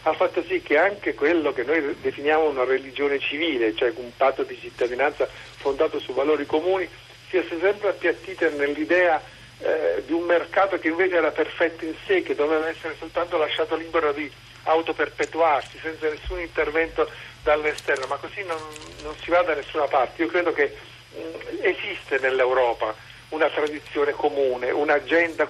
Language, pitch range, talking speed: Italian, 145-185 Hz, 150 wpm